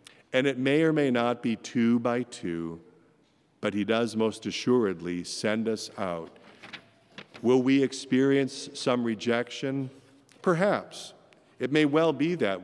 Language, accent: English, American